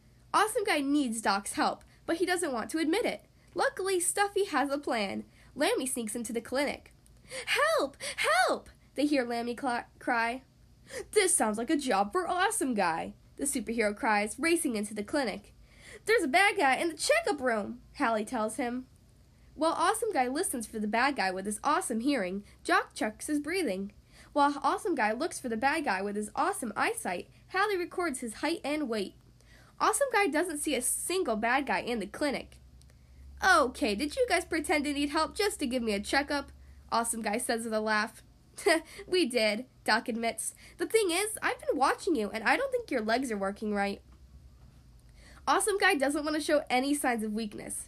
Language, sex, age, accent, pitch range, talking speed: English, female, 10-29, American, 220-340 Hz, 185 wpm